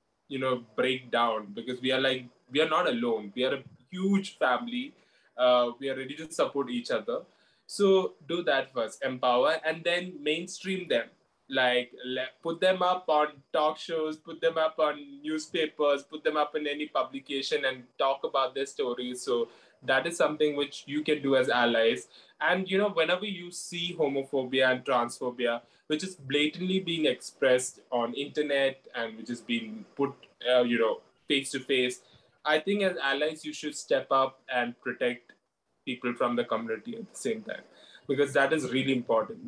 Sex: male